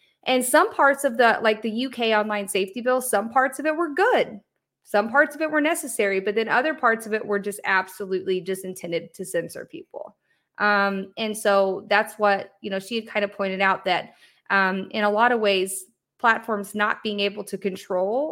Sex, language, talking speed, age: female, English, 205 wpm, 20-39